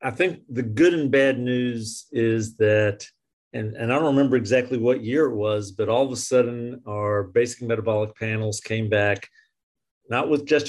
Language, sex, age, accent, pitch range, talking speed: English, male, 50-69, American, 110-135 Hz, 185 wpm